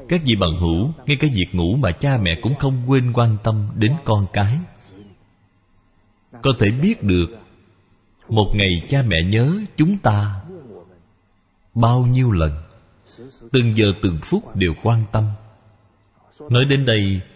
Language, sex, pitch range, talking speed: Vietnamese, male, 95-125 Hz, 150 wpm